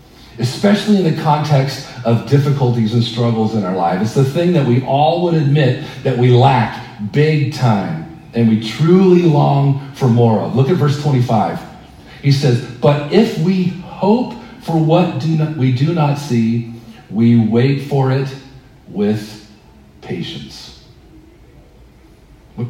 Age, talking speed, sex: 40-59, 145 wpm, male